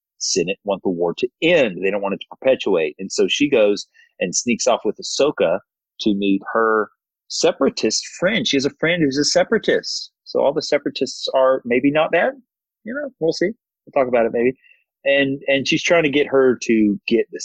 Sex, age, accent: male, 30-49, American